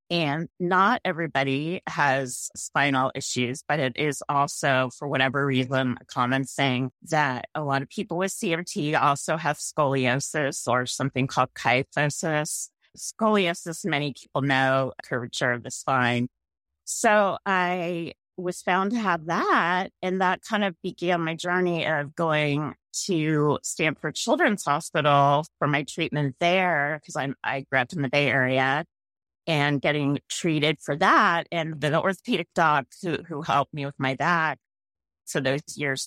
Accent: American